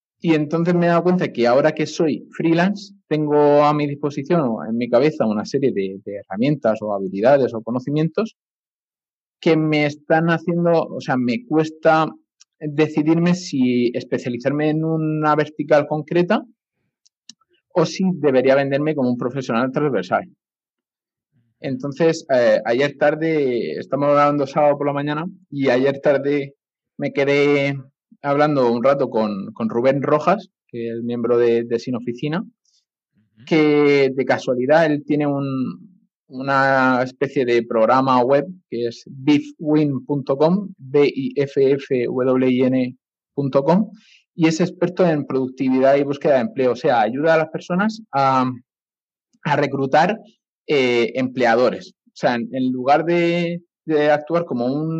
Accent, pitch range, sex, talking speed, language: Spanish, 130-165 Hz, male, 135 wpm, Spanish